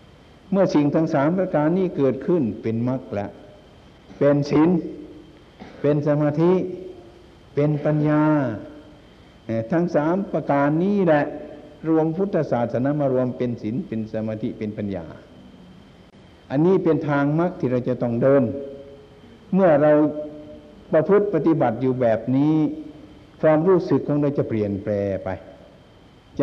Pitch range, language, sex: 120-155 Hz, Thai, male